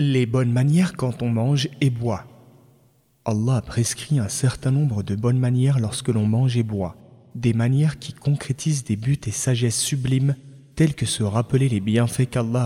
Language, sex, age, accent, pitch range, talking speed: French, male, 30-49, French, 115-140 Hz, 175 wpm